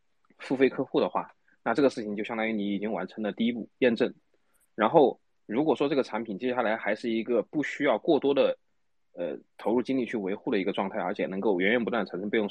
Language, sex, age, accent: Chinese, male, 20-39, native